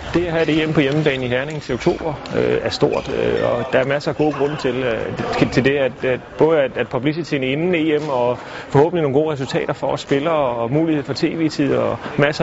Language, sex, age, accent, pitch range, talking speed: Danish, male, 30-49, native, 130-150 Hz, 230 wpm